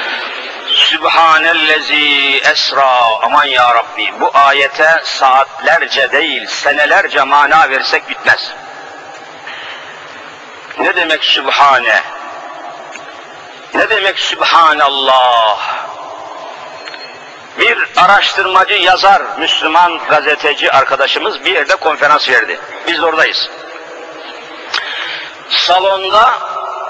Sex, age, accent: male, 50-69, native